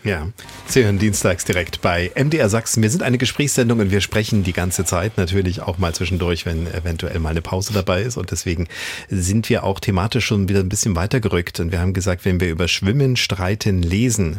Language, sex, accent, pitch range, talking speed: German, male, German, 90-110 Hz, 210 wpm